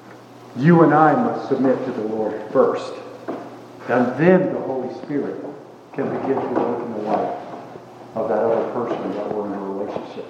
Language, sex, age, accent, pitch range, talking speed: English, male, 50-69, American, 130-180 Hz, 175 wpm